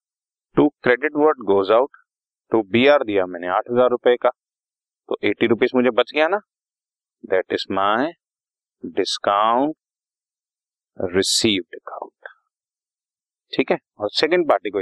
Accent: native